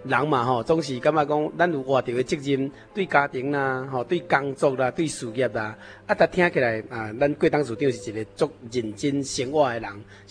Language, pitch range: Chinese, 120-160 Hz